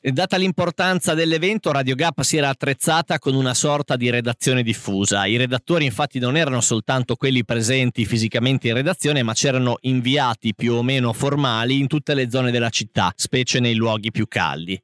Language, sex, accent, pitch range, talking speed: Italian, male, native, 115-145 Hz, 175 wpm